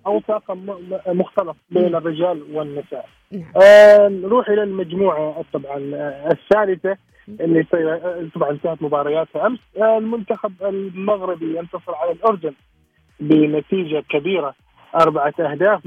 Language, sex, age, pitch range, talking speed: Arabic, male, 30-49, 155-195 Hz, 85 wpm